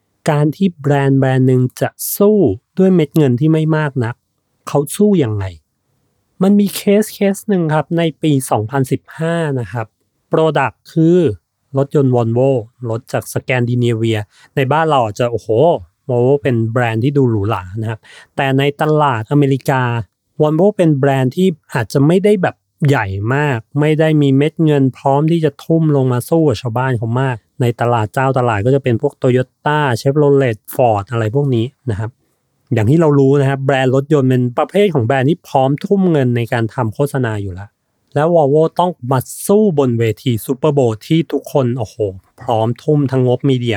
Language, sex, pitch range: Thai, male, 120-150 Hz